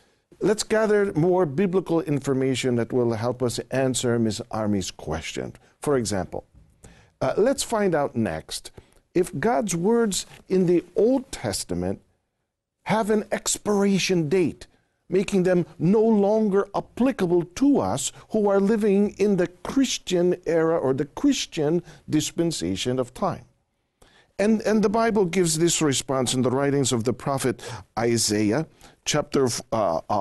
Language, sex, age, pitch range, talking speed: English, male, 50-69, 130-210 Hz, 135 wpm